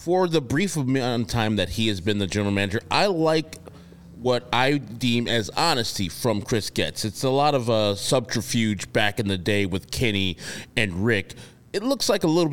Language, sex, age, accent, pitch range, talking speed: English, male, 30-49, American, 105-145 Hz, 200 wpm